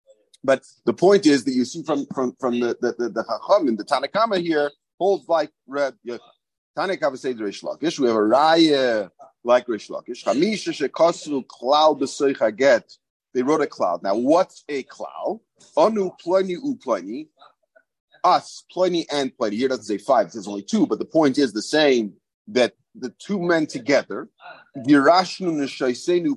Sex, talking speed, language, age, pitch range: male, 150 wpm, English, 40-59, 135-225 Hz